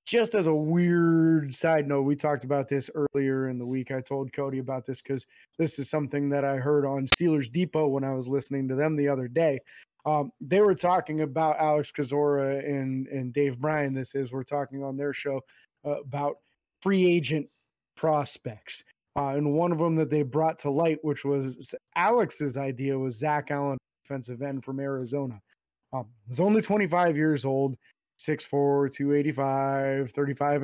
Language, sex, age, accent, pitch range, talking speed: English, male, 20-39, American, 135-165 Hz, 175 wpm